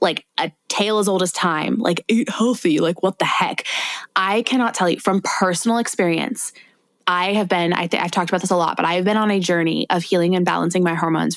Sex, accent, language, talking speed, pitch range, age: female, American, English, 235 wpm, 180-240 Hz, 20-39